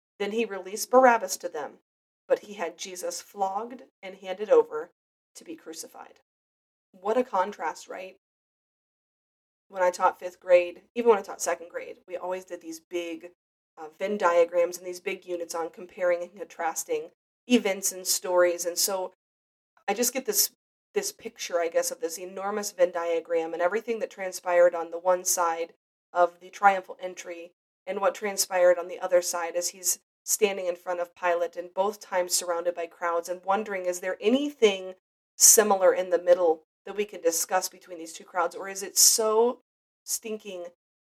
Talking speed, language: 175 wpm, English